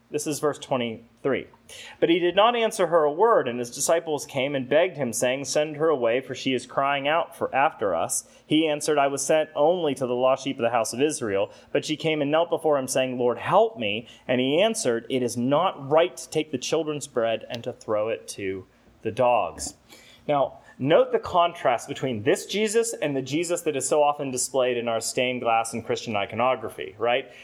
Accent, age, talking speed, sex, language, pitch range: American, 30-49, 215 wpm, male, English, 125-165 Hz